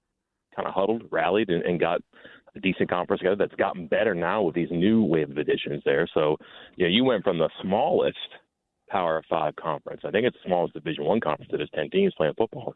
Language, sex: English, male